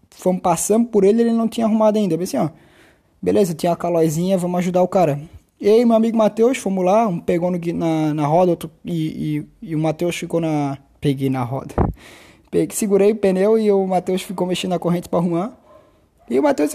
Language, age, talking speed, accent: Portuguese, 20-39, 215 wpm, Brazilian